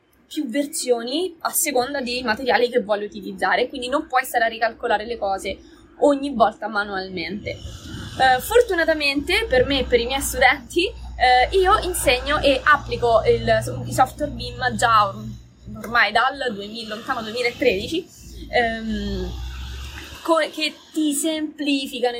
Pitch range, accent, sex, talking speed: 230-290 Hz, native, female, 130 wpm